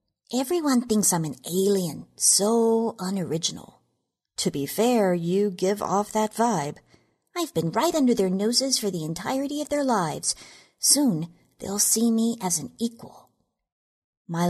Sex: female